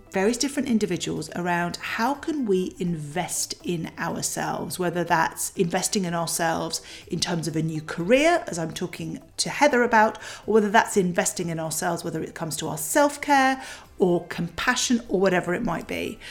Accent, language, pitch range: British, English, 175-240 Hz